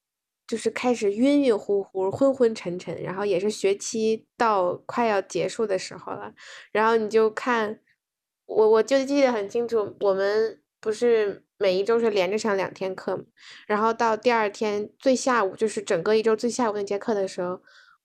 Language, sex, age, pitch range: Chinese, female, 10-29, 195-255 Hz